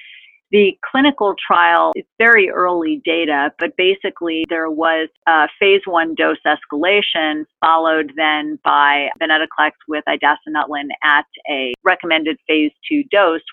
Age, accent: 40-59, American